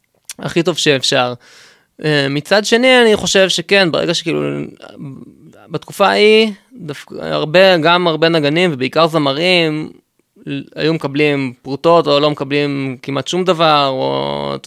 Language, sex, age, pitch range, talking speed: Hebrew, male, 20-39, 140-175 Hz, 125 wpm